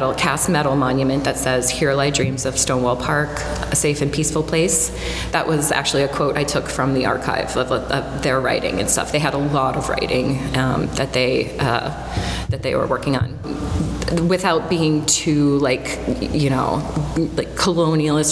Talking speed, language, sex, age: 185 wpm, English, female, 30-49